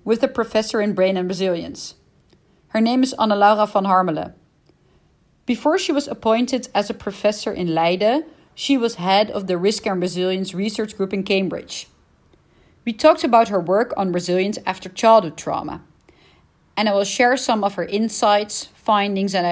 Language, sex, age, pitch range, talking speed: English, female, 40-59, 190-250 Hz, 170 wpm